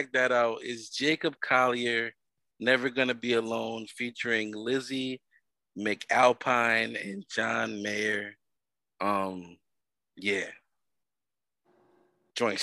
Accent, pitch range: American, 95-120 Hz